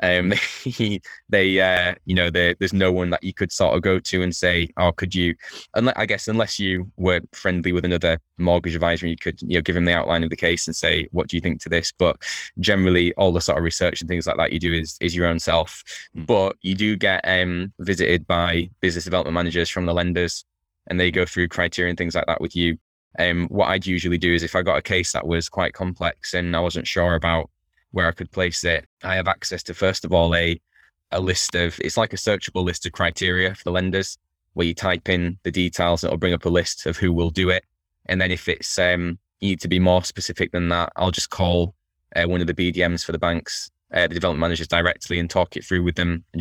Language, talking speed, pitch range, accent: English, 250 wpm, 85-90 Hz, British